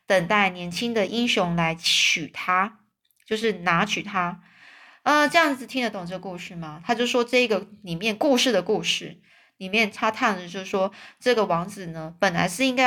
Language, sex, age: Chinese, female, 20-39